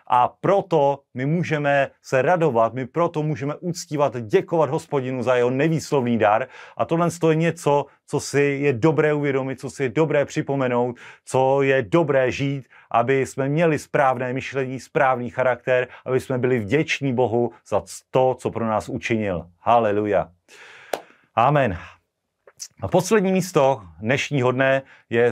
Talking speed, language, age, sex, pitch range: 140 wpm, Slovak, 30-49, male, 115-140 Hz